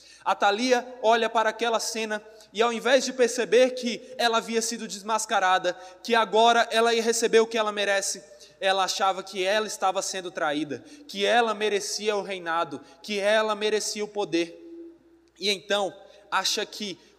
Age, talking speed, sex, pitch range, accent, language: 20-39, 160 wpm, male, 190-225 Hz, Brazilian, Portuguese